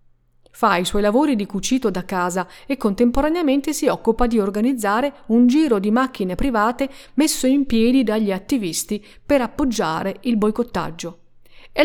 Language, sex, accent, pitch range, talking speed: Italian, female, native, 185-250 Hz, 145 wpm